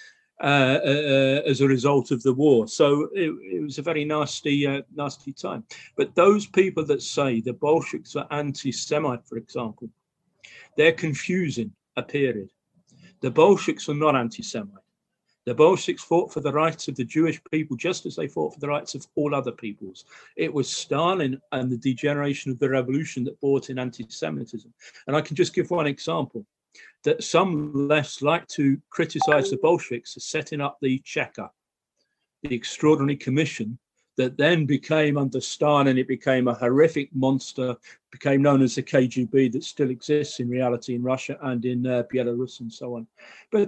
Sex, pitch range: male, 130-160 Hz